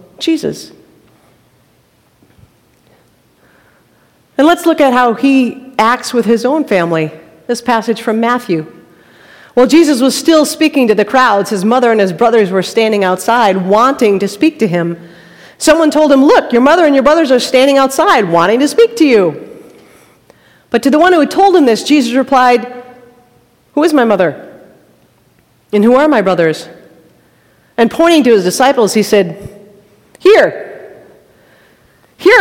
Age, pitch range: 40-59, 225-320 Hz